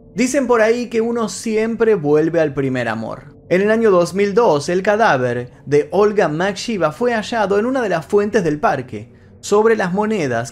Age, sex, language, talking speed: 30-49, male, Spanish, 175 wpm